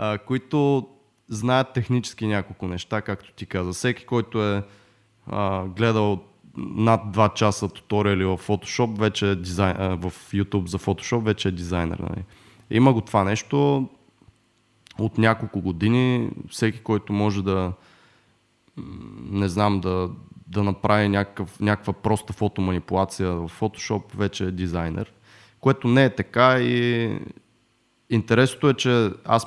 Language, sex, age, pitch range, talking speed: Bulgarian, male, 20-39, 95-115 Hz, 120 wpm